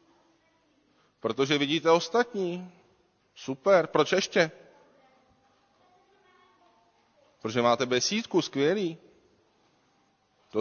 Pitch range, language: 115-155 Hz, Czech